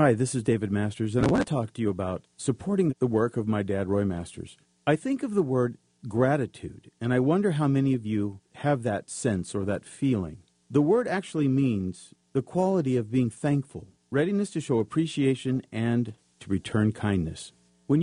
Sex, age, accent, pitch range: male, 50-69, American, 110-150 Hz